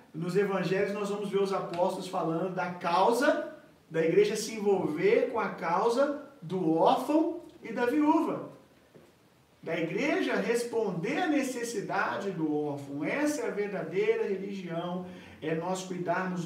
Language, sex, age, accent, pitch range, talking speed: Gujarati, male, 40-59, Brazilian, 165-240 Hz, 135 wpm